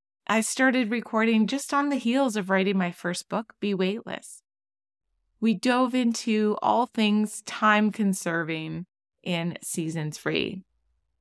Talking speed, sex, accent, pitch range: 130 wpm, female, American, 175-235 Hz